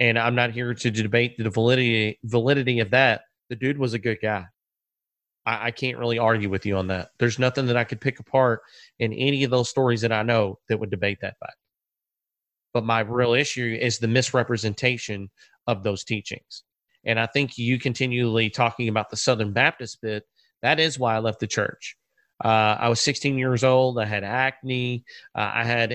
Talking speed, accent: 200 wpm, American